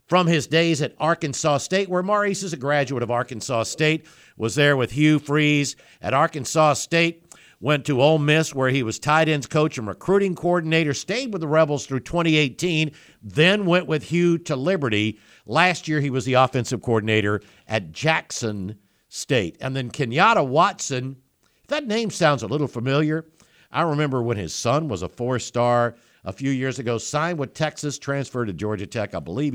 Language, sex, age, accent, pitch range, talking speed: English, male, 60-79, American, 110-155 Hz, 180 wpm